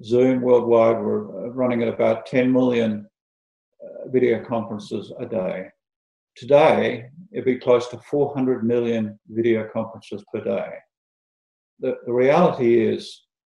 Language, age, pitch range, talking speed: English, 50-69, 115-130 Hz, 125 wpm